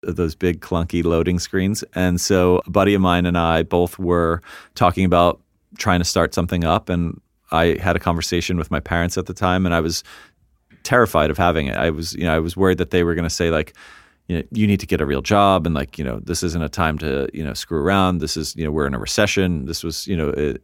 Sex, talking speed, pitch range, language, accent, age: male, 260 wpm, 85-110 Hz, English, American, 40-59